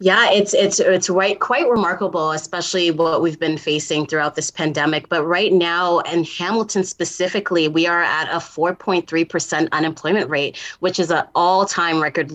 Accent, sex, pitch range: American, female, 155-185 Hz